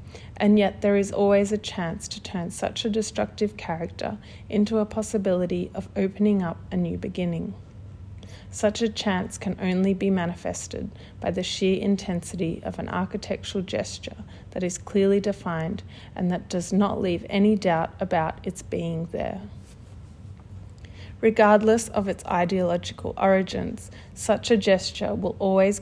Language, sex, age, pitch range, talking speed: English, female, 30-49, 165-205 Hz, 145 wpm